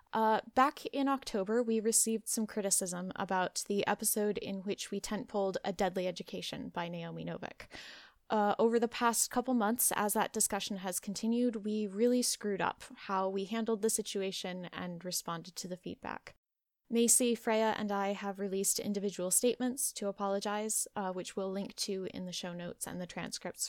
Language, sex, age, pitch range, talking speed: English, female, 10-29, 190-225 Hz, 175 wpm